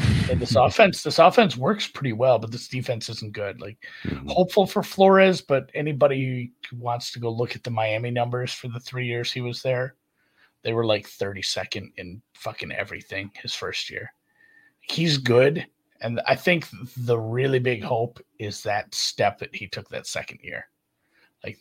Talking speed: 180 wpm